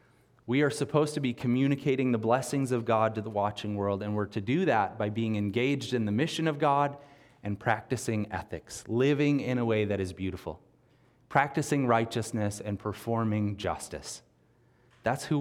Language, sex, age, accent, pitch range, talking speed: English, male, 30-49, American, 110-135 Hz, 170 wpm